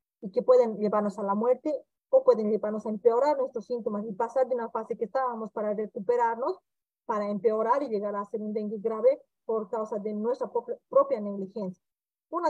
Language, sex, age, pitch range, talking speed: Spanish, female, 30-49, 215-260 Hz, 185 wpm